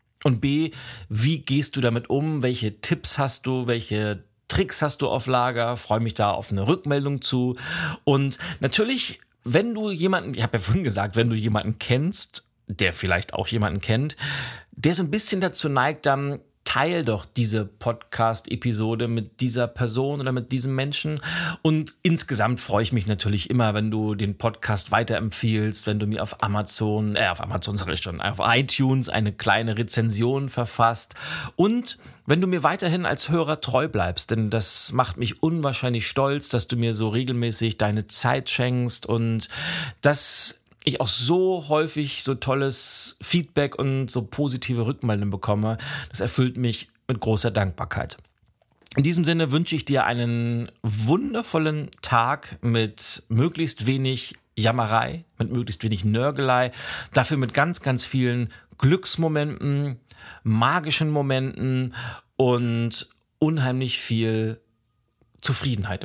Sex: male